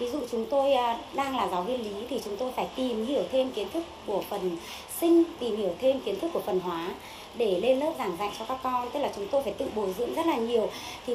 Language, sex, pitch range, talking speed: Vietnamese, male, 180-265 Hz, 265 wpm